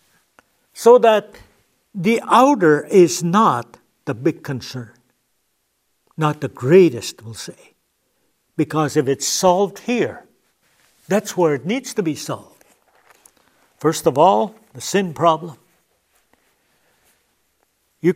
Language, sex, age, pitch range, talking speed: English, male, 60-79, 150-205 Hz, 110 wpm